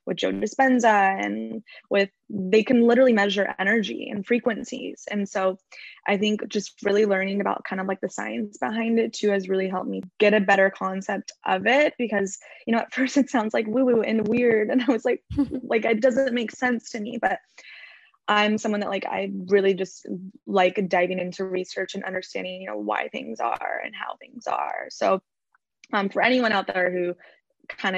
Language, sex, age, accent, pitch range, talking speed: English, female, 10-29, American, 190-240 Hz, 195 wpm